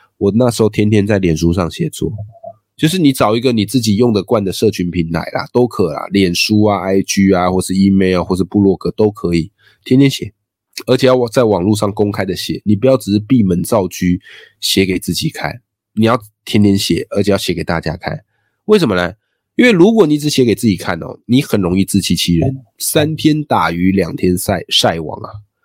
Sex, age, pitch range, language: male, 20-39, 95-115 Hz, Chinese